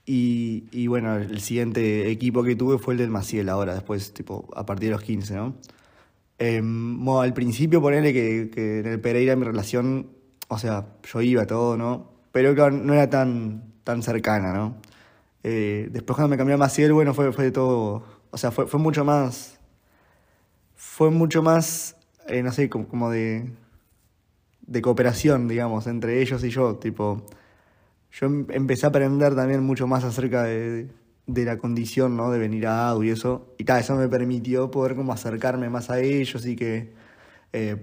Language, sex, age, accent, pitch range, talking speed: Spanish, male, 20-39, Argentinian, 110-130 Hz, 180 wpm